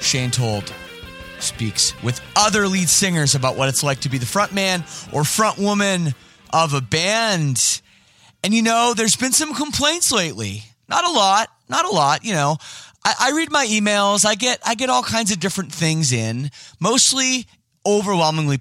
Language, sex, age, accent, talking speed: English, male, 30-49, American, 175 wpm